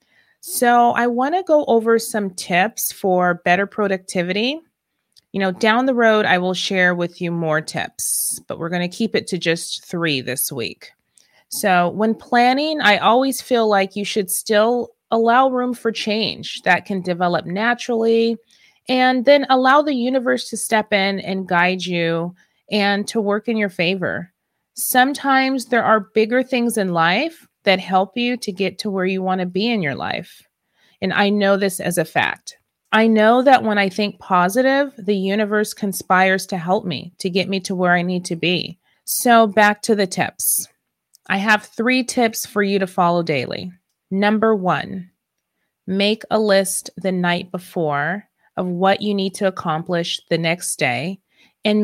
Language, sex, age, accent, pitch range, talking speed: English, female, 30-49, American, 185-230 Hz, 175 wpm